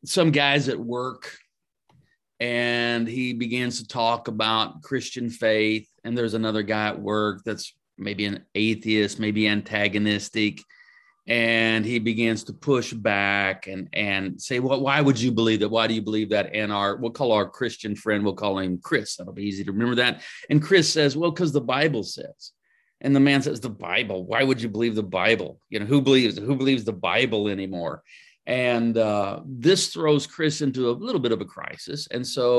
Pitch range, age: 110-130 Hz, 40-59